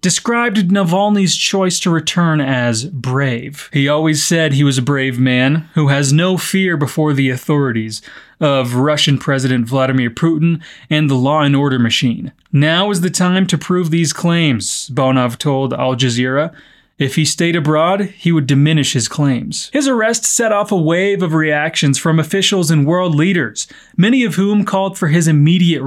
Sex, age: male, 30-49